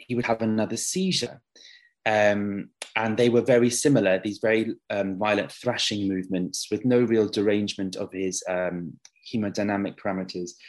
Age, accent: 20-39, British